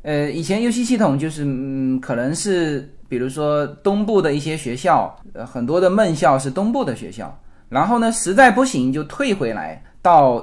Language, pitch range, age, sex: Chinese, 125-195 Hz, 20-39, male